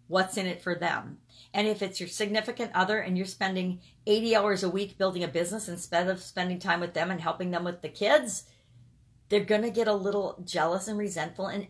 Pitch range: 165-205 Hz